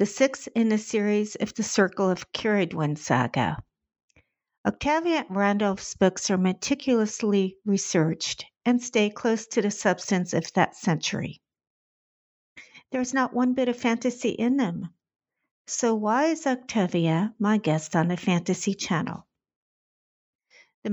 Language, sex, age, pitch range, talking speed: English, female, 50-69, 170-225 Hz, 130 wpm